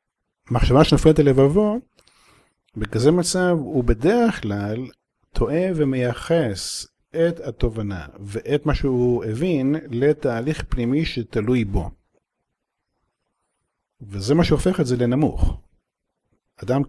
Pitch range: 115-155 Hz